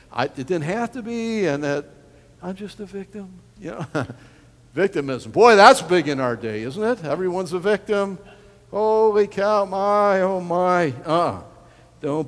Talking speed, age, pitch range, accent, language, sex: 160 wpm, 60-79, 155-210 Hz, American, English, male